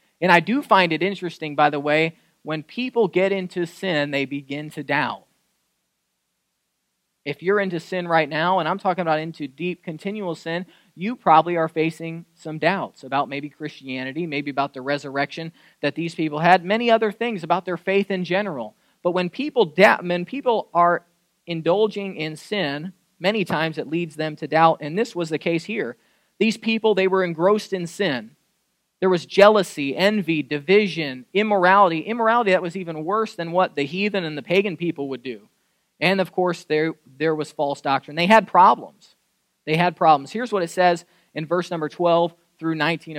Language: English